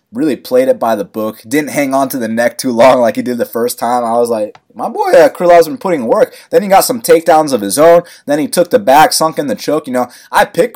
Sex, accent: male, American